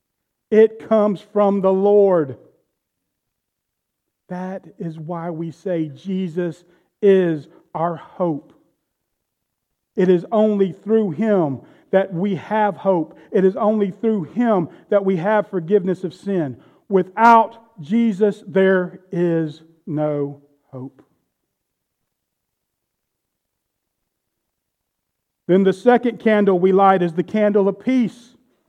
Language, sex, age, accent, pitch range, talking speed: English, male, 40-59, American, 175-220 Hz, 105 wpm